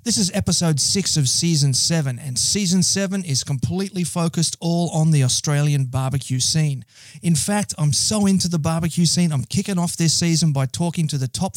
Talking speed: 190 wpm